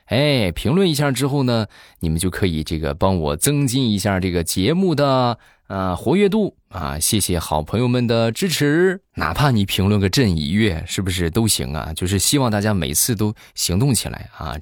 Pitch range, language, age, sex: 85-120 Hz, Chinese, 20-39, male